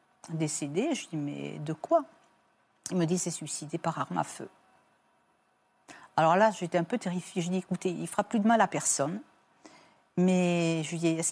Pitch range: 165-195 Hz